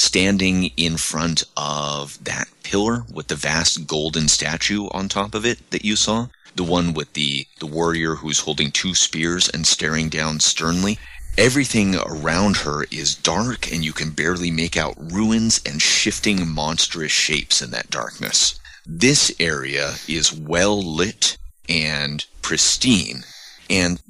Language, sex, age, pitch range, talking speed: English, male, 30-49, 80-100 Hz, 145 wpm